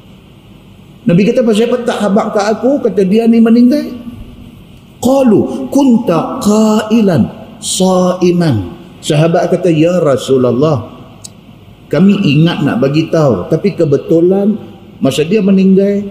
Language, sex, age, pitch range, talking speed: Malay, male, 50-69, 155-200 Hz, 110 wpm